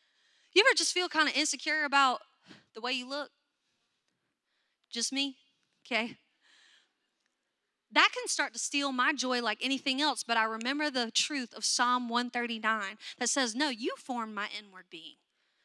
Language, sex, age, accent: English, female, 30-49, American